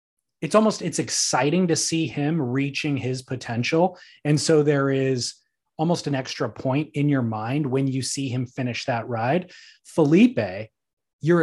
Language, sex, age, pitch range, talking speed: English, male, 30-49, 130-160 Hz, 150 wpm